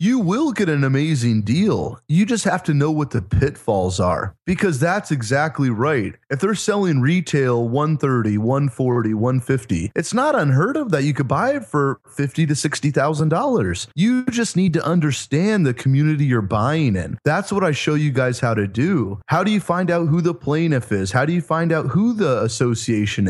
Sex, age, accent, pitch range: male, 30-49, American, 120-170 Hz